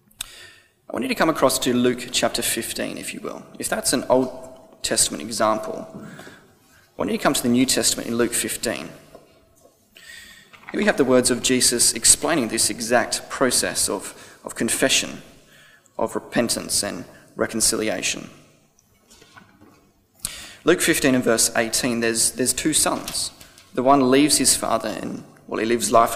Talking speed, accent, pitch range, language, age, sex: 155 wpm, Australian, 115-140 Hz, English, 20-39, male